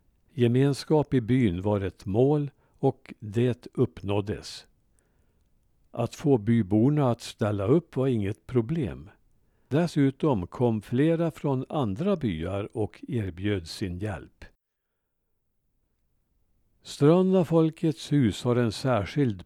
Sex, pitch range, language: male, 105-145 Hz, Swedish